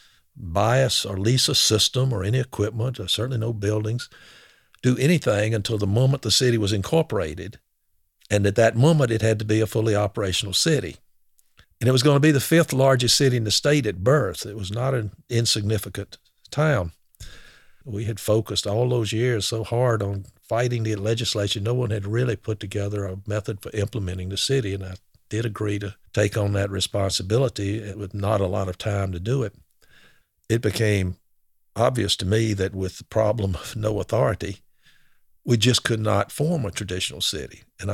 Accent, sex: American, male